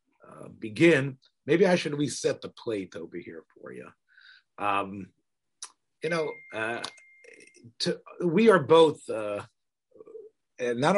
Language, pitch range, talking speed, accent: English, 105-155 Hz, 120 wpm, American